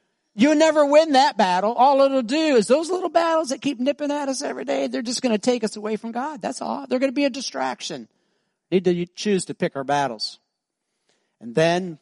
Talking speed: 230 wpm